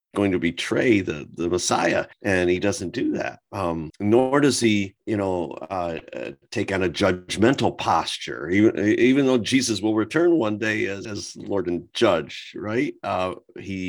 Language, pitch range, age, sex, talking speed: English, 85-110 Hz, 50-69, male, 170 wpm